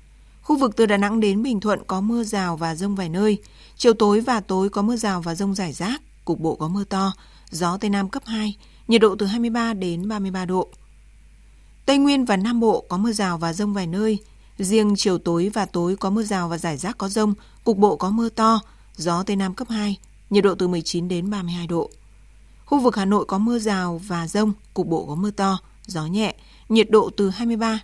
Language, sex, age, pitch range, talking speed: Vietnamese, female, 20-39, 185-220 Hz, 225 wpm